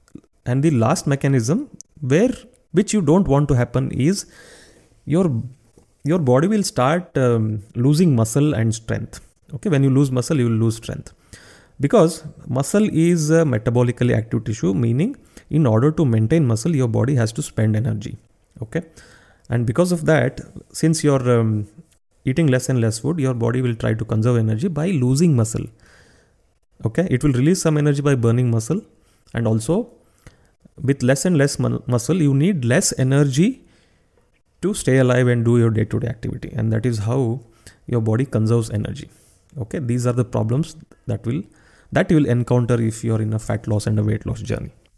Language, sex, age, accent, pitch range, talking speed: Kannada, male, 30-49, native, 115-155 Hz, 180 wpm